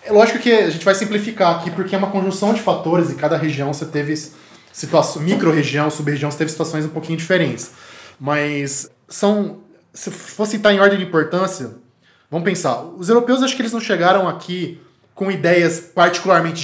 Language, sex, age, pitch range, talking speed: Portuguese, male, 20-39, 150-210 Hz, 185 wpm